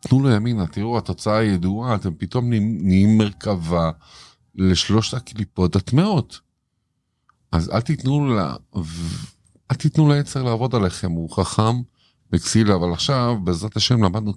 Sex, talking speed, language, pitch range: male, 125 wpm, Hebrew, 105-160 Hz